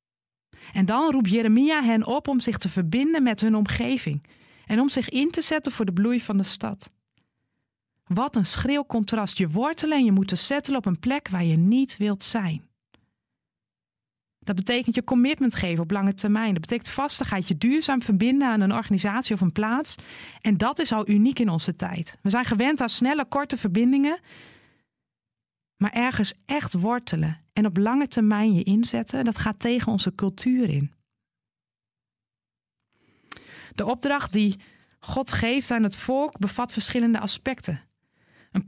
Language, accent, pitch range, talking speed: Dutch, Dutch, 195-255 Hz, 165 wpm